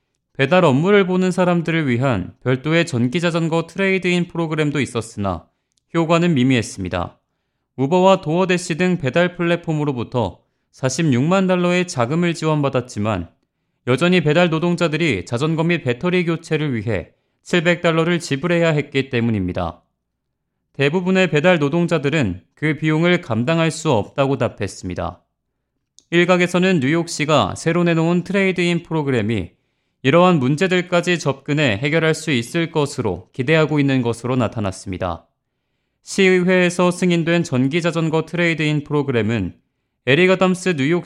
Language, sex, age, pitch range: Korean, male, 30-49, 125-175 Hz